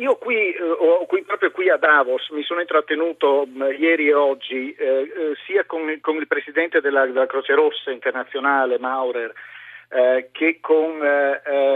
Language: Italian